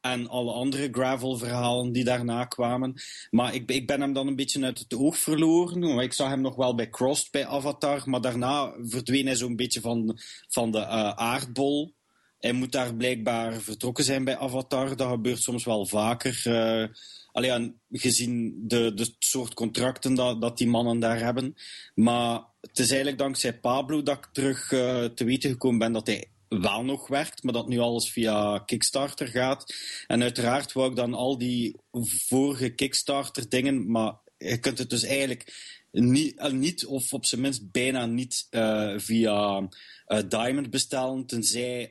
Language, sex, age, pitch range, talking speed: English, male, 30-49, 115-135 Hz, 170 wpm